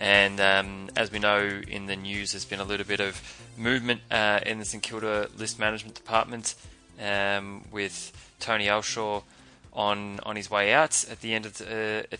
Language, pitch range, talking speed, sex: English, 100-110 Hz, 160 wpm, male